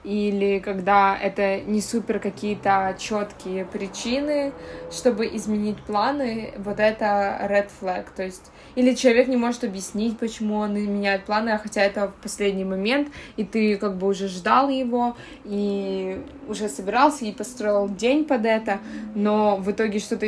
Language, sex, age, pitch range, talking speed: Ukrainian, female, 20-39, 200-240 Hz, 150 wpm